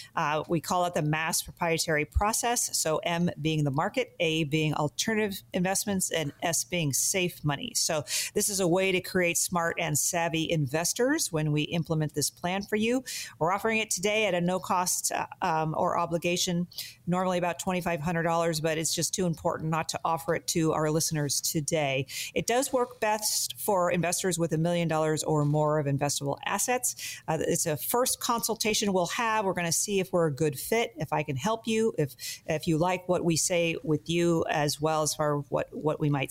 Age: 40-59